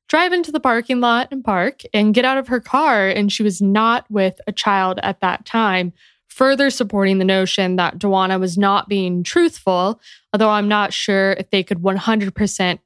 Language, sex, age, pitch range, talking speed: English, female, 20-39, 190-235 Hz, 190 wpm